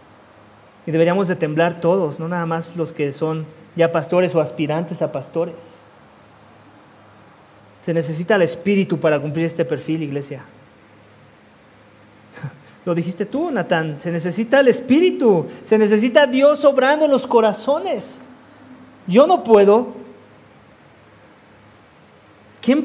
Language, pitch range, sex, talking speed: English, 150-210 Hz, male, 120 wpm